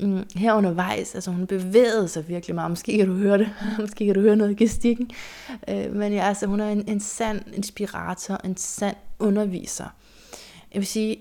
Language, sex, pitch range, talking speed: Danish, female, 175-210 Hz, 185 wpm